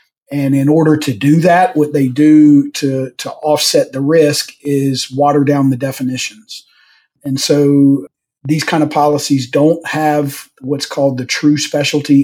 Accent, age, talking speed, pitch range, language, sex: American, 40-59, 155 wpm, 135-150 Hz, English, male